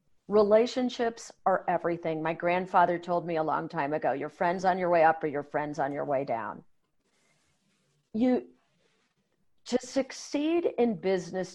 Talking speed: 150 wpm